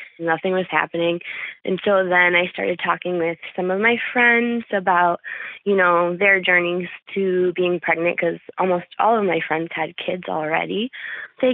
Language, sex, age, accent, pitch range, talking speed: English, female, 20-39, American, 170-200 Hz, 165 wpm